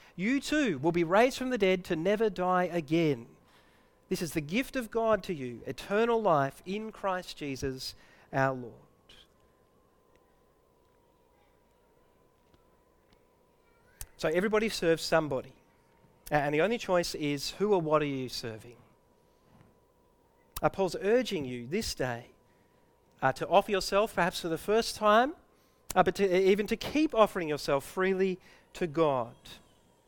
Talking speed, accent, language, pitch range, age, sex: 135 wpm, Australian, English, 150-215 Hz, 40-59, male